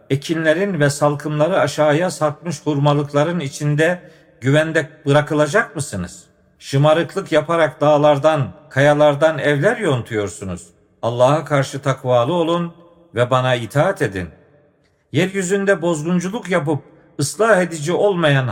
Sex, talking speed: male, 95 wpm